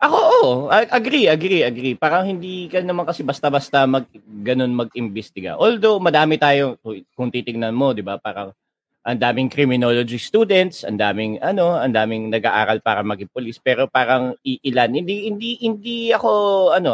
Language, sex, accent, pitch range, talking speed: Filipino, male, native, 120-155 Hz, 155 wpm